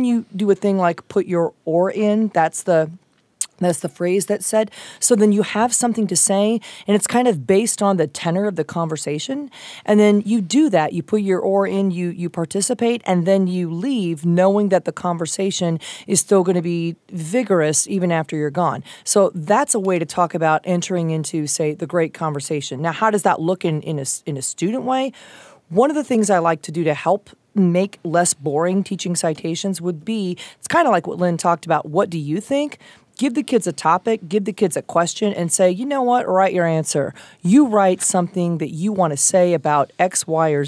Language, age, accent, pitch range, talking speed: English, 30-49, American, 165-205 Hz, 220 wpm